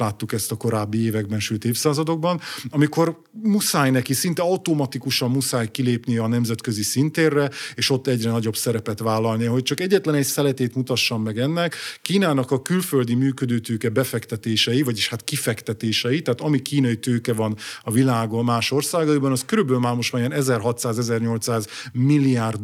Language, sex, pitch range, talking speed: Hungarian, male, 115-140 Hz, 150 wpm